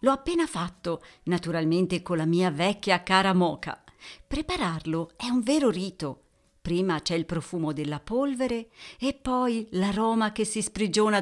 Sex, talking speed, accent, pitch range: female, 145 wpm, native, 165-235 Hz